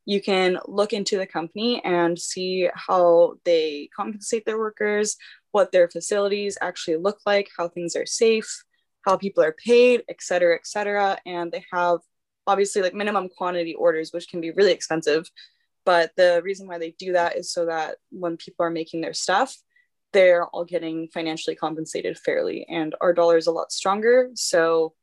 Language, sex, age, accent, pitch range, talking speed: English, female, 10-29, American, 165-210 Hz, 175 wpm